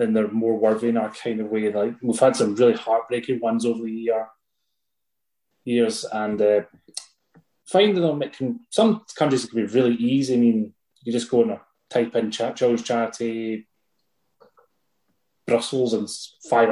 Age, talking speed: 20-39, 160 wpm